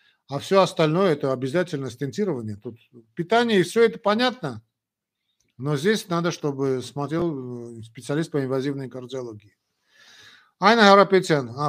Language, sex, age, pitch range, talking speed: Russian, male, 50-69, 130-160 Hz, 125 wpm